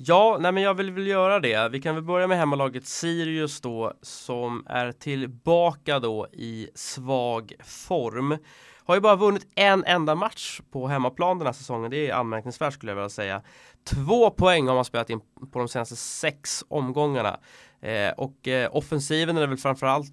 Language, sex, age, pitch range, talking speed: English, male, 20-39, 115-150 Hz, 180 wpm